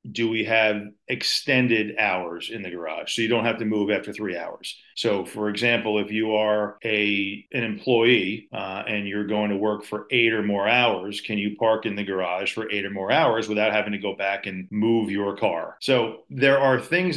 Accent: American